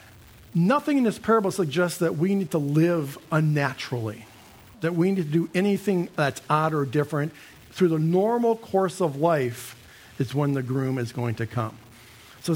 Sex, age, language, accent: male, 50-69, English, American